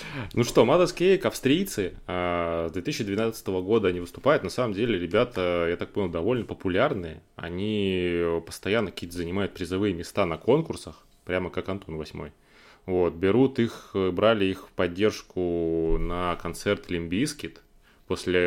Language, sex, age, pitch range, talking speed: Russian, male, 20-39, 85-100 Hz, 135 wpm